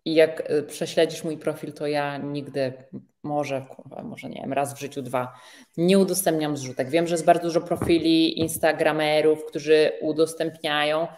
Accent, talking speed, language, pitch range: native, 155 wpm, Polish, 145-180 Hz